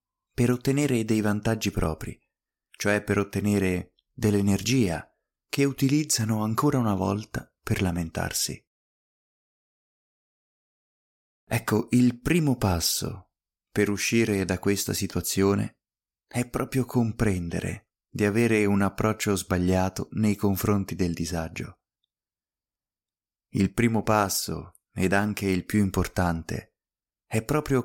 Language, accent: Italian, native